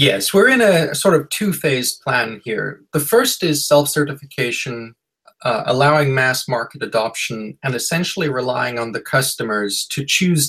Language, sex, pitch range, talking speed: English, male, 120-150 Hz, 145 wpm